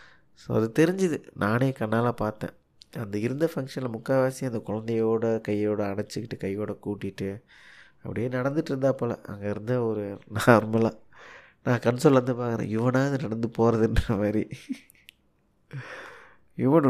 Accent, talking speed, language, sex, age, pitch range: native, 120 wpm, Tamil, male, 20-39, 110-130 Hz